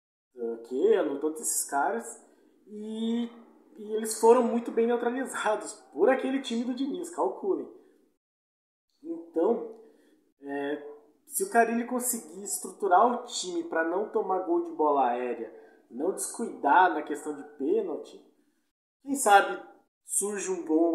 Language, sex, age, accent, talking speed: Portuguese, male, 20-39, Brazilian, 130 wpm